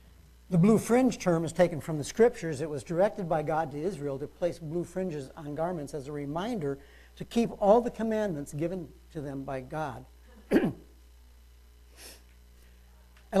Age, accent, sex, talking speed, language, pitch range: 60-79, American, male, 160 wpm, English, 135-185 Hz